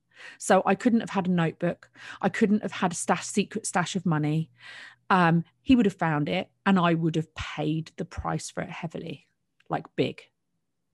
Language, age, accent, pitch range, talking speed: English, 30-49, British, 165-210 Hz, 185 wpm